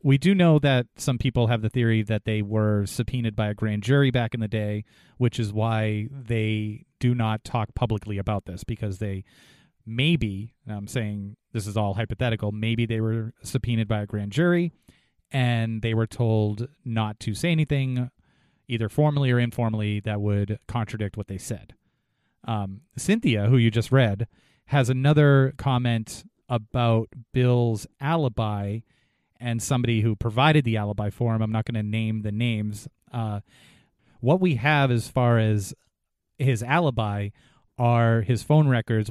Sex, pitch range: male, 110-125 Hz